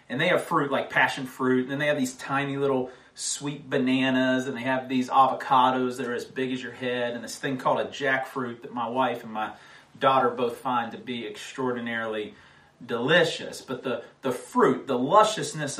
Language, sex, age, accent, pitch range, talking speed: English, male, 40-59, American, 120-140 Hz, 200 wpm